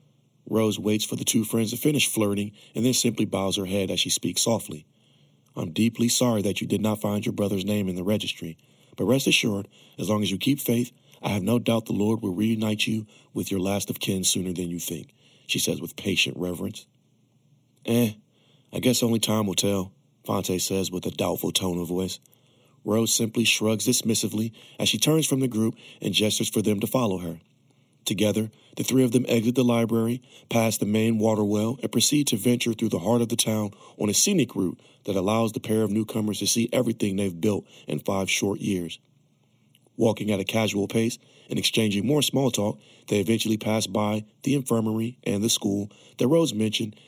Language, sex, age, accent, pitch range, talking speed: English, male, 40-59, American, 100-120 Hz, 205 wpm